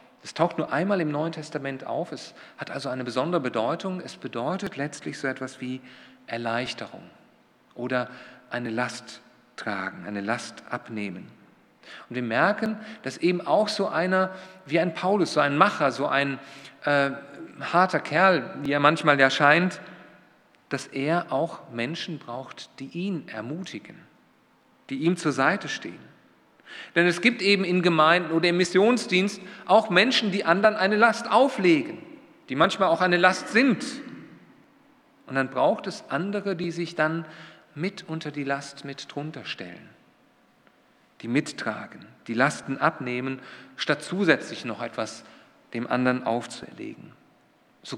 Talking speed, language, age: 145 wpm, German, 40-59